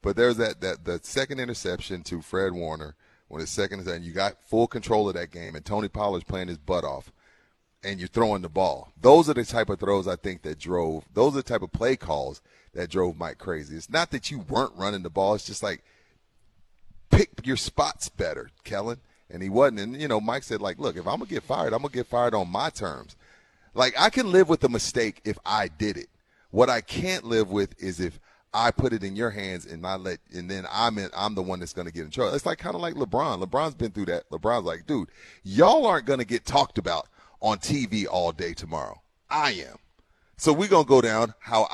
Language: English